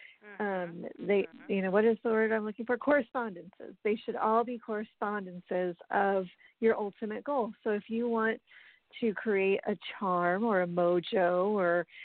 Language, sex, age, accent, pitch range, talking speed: English, female, 40-59, American, 185-230 Hz, 165 wpm